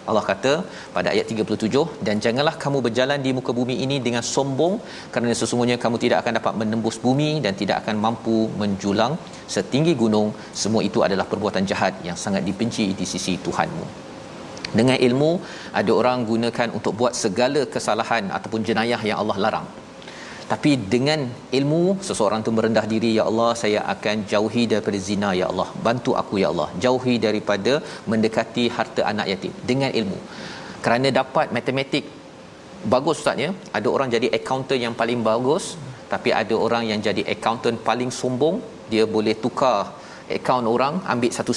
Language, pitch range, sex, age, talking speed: Malayalam, 110-130 Hz, male, 40-59, 160 wpm